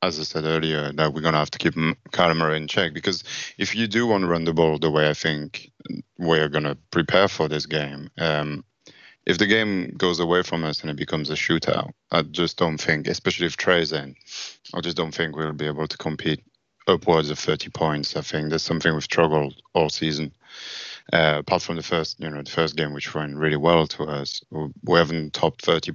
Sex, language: male, English